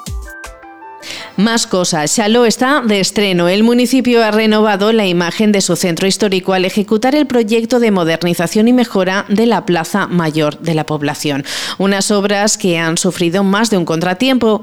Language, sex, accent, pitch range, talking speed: Spanish, female, Spanish, 175-220 Hz, 165 wpm